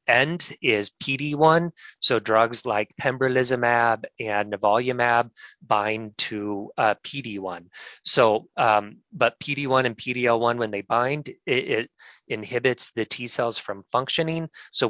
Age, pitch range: 30-49, 110-130 Hz